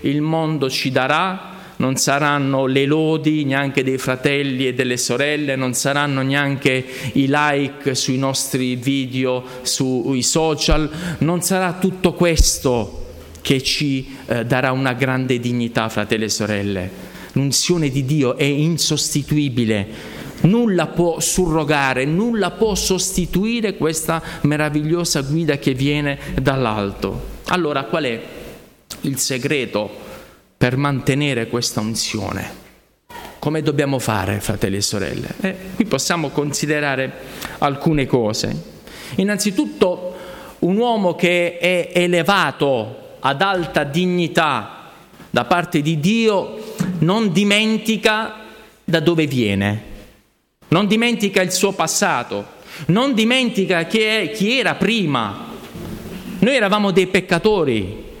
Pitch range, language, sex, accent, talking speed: 130-180 Hz, Italian, male, native, 110 wpm